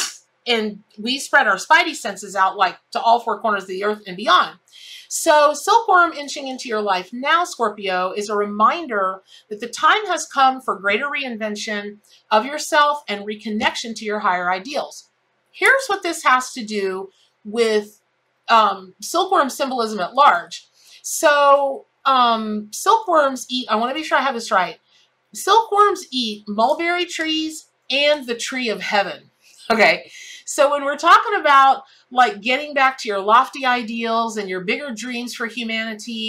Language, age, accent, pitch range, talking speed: English, 30-49, American, 210-295 Hz, 160 wpm